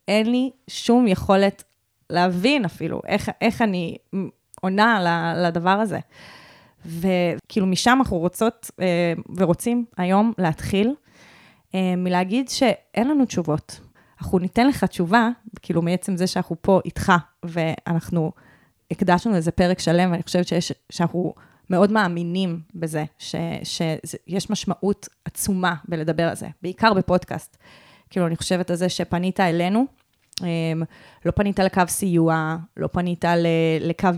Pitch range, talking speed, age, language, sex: 170-200 Hz, 120 wpm, 20-39, Hebrew, female